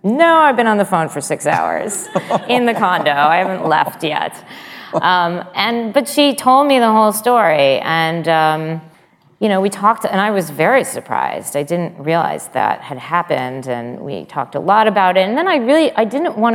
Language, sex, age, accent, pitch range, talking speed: English, female, 30-49, American, 150-210 Hz, 205 wpm